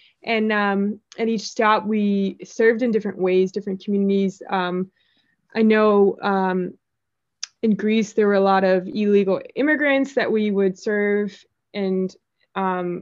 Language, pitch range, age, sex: English, 195-225 Hz, 20-39, female